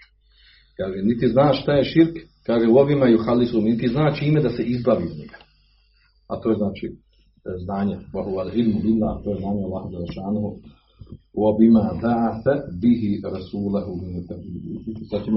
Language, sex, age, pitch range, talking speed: Croatian, male, 40-59, 100-120 Hz, 135 wpm